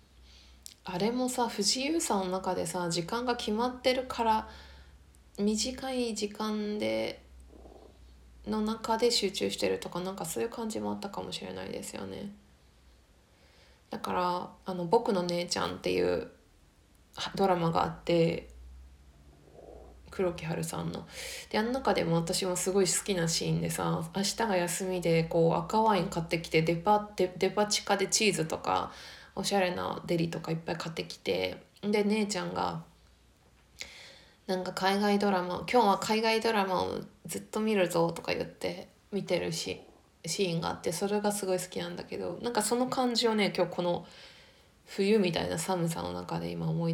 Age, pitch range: 20-39, 160-215 Hz